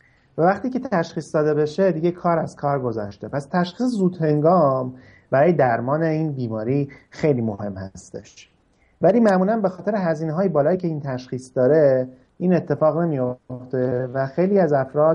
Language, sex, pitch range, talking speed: Persian, male, 130-170 Hz, 155 wpm